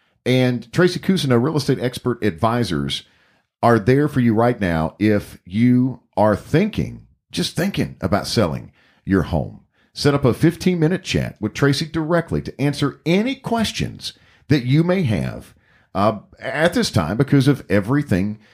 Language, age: English, 50-69